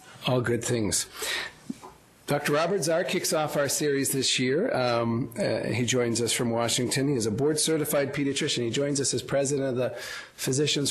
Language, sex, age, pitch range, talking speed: English, male, 40-59, 115-140 Hz, 175 wpm